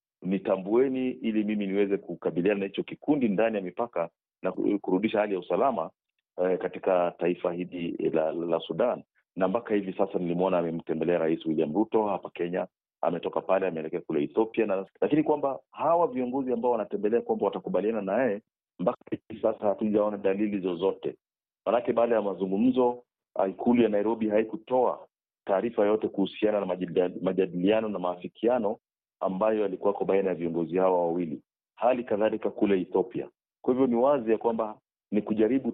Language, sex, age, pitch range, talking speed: Swahili, male, 40-59, 95-115 Hz, 150 wpm